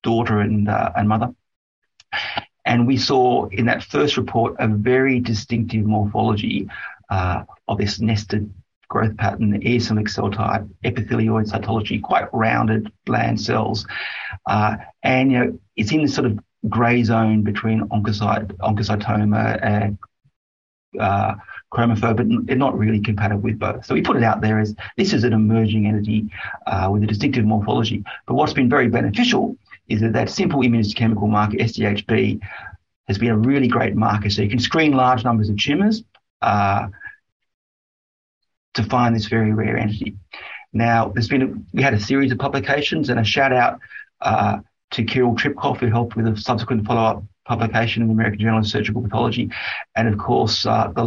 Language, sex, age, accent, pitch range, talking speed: English, male, 40-59, Australian, 105-120 Hz, 160 wpm